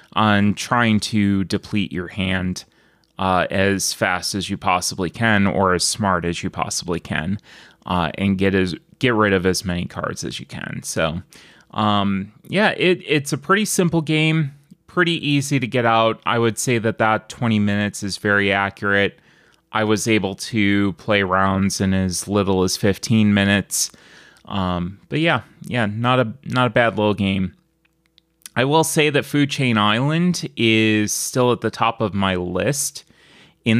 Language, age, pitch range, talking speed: English, 30-49, 100-125 Hz, 170 wpm